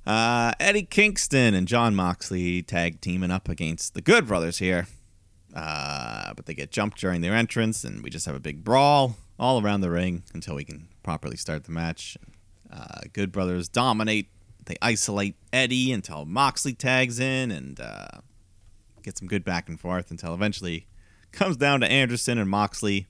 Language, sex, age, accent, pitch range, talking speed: English, male, 30-49, American, 90-115 Hz, 175 wpm